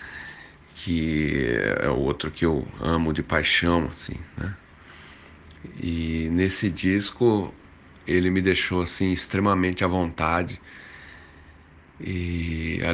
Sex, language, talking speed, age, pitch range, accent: male, Portuguese, 105 wpm, 40-59, 80-95 Hz, Brazilian